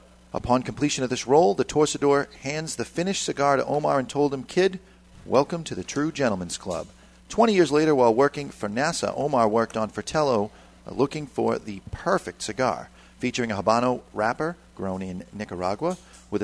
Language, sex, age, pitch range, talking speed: English, male, 40-59, 105-145 Hz, 170 wpm